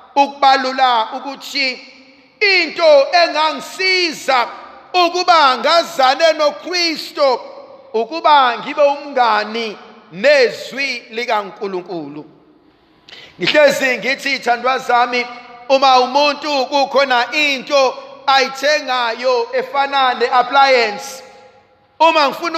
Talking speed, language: 70 wpm, English